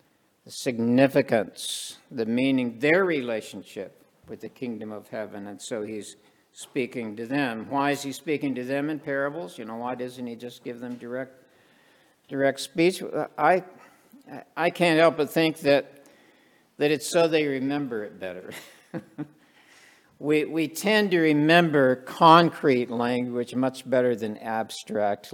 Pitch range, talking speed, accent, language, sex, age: 120-150 Hz, 145 wpm, American, English, male, 60-79